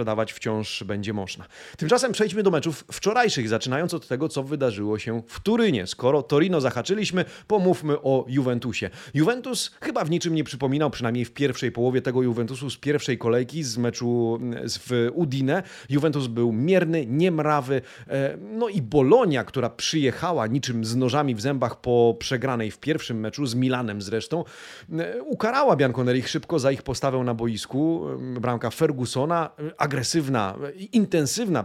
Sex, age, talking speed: male, 30-49, 150 wpm